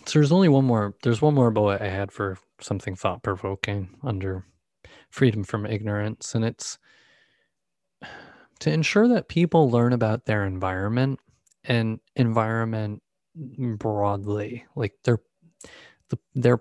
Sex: male